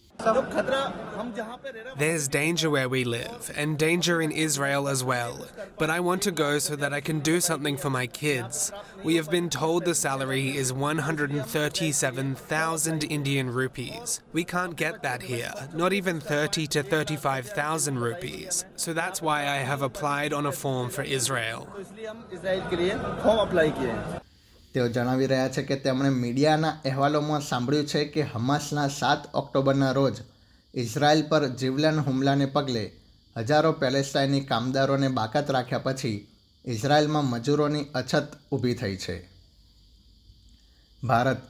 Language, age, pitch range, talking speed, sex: Gujarati, 20-39, 130-155 Hz, 145 wpm, male